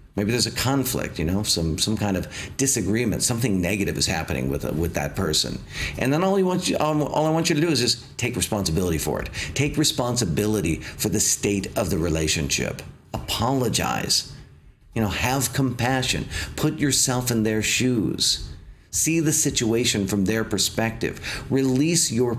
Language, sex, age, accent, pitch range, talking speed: English, male, 50-69, American, 90-125 Hz, 175 wpm